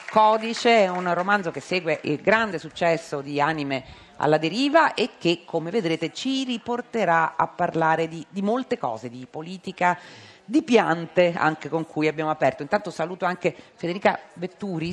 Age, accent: 40-59, native